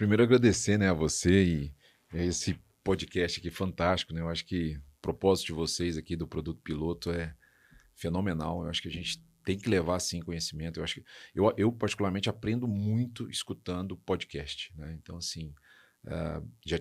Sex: male